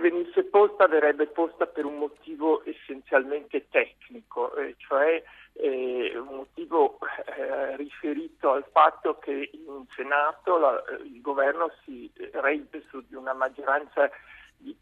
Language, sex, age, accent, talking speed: Italian, male, 50-69, native, 130 wpm